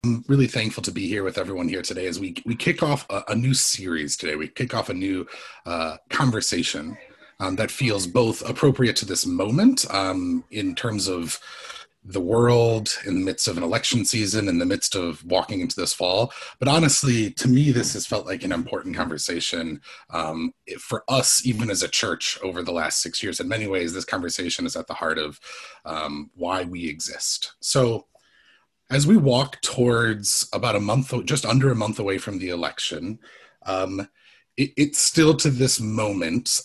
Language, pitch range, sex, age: English, 95-135 Hz, male, 30-49